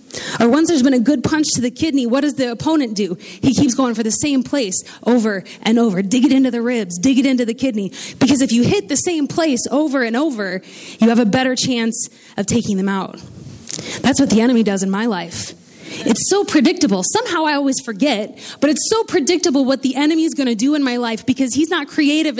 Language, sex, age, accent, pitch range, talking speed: English, female, 20-39, American, 225-290 Hz, 235 wpm